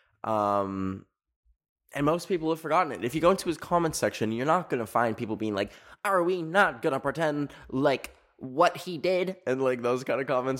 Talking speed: 215 wpm